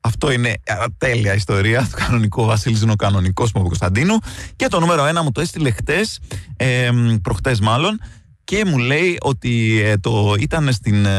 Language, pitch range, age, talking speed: Greek, 95-120 Hz, 20-39, 180 wpm